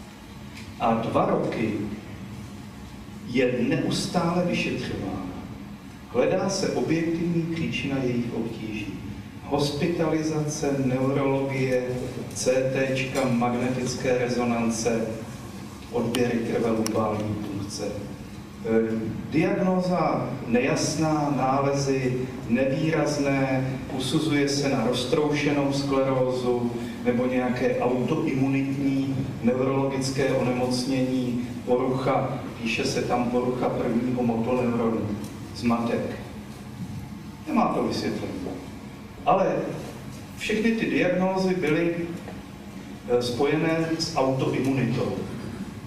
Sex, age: male, 40-59